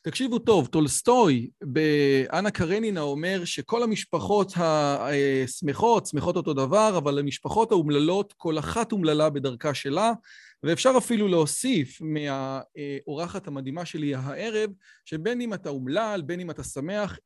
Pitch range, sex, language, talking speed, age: 155-215 Hz, male, Hebrew, 120 wpm, 40-59